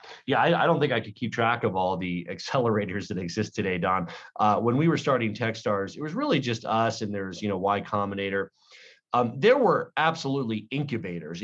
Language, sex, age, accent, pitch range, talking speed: English, male, 30-49, American, 95-115 Hz, 205 wpm